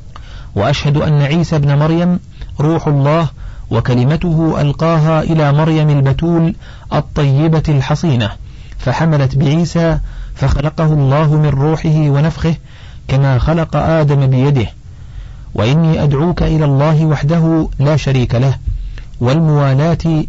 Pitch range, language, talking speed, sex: 125-155 Hz, Arabic, 100 wpm, male